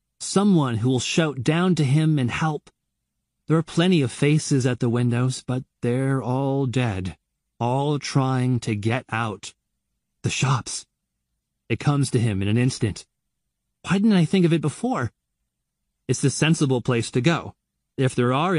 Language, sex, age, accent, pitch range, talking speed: English, male, 30-49, American, 115-150 Hz, 165 wpm